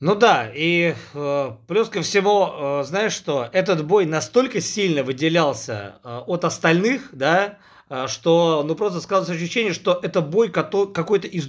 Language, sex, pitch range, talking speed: Russian, male, 150-190 Hz, 160 wpm